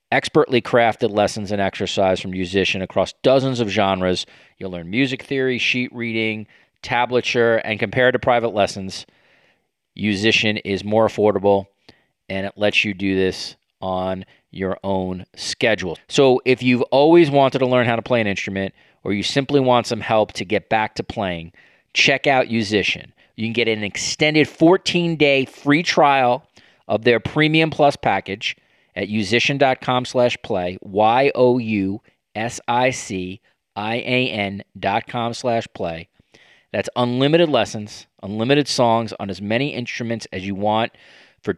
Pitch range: 100-125 Hz